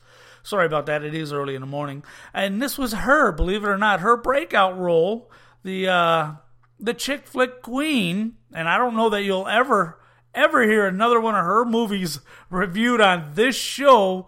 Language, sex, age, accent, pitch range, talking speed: English, male, 40-59, American, 160-225 Hz, 185 wpm